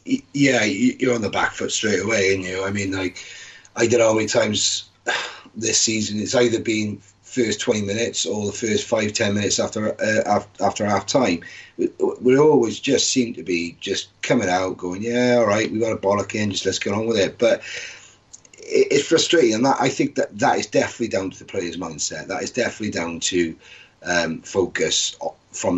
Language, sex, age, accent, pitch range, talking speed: English, male, 30-49, British, 100-130 Hz, 205 wpm